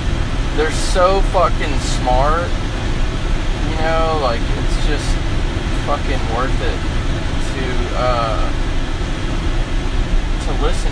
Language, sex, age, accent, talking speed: English, male, 20-39, American, 90 wpm